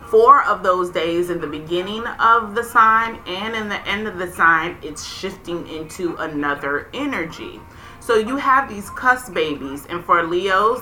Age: 30-49